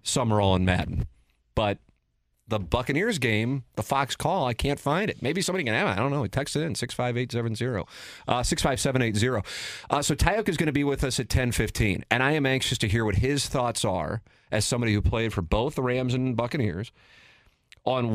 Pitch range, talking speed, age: 100-125 Hz, 200 wpm, 30-49